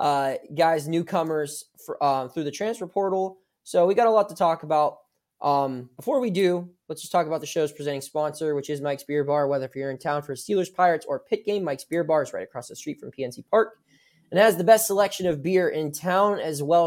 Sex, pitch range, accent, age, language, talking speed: male, 145-190 Hz, American, 20-39, English, 245 wpm